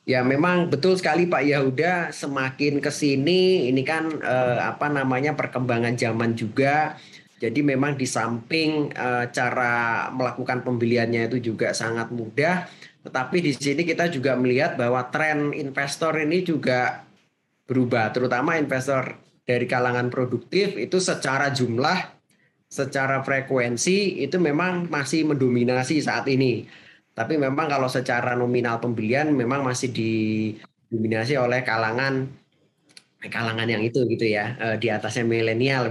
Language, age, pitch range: Indonesian, 20-39, 115-145 Hz